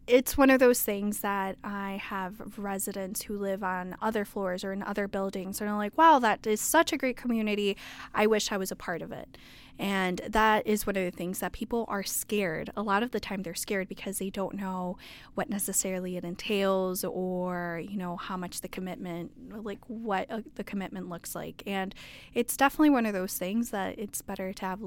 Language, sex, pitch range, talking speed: English, female, 185-215 Hz, 210 wpm